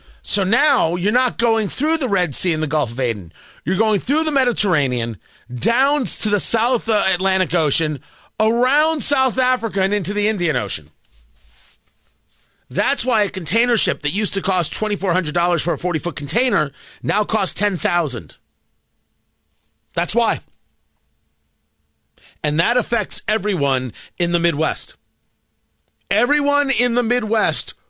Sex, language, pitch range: male, English, 150-235 Hz